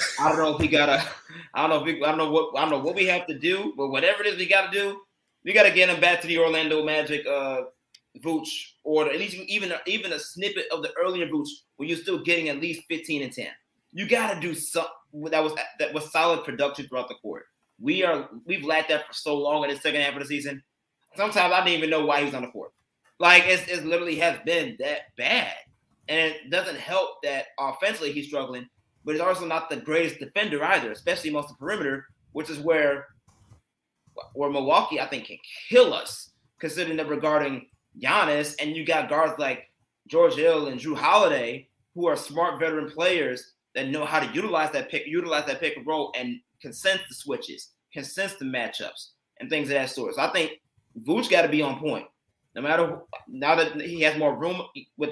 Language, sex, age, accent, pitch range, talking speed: English, male, 20-39, American, 145-180 Hz, 225 wpm